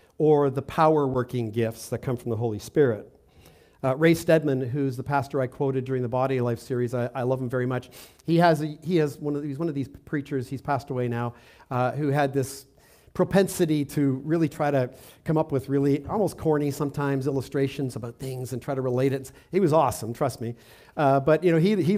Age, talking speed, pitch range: 50-69, 225 wpm, 130-165 Hz